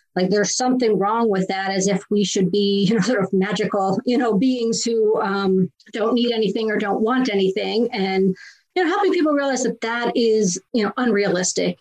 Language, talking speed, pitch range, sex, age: English, 205 wpm, 190-235 Hz, female, 40-59